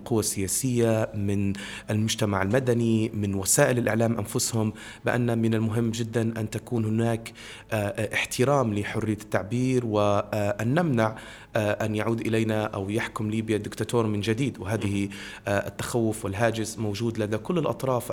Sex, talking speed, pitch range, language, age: male, 125 wpm, 110-125 Hz, Arabic, 30-49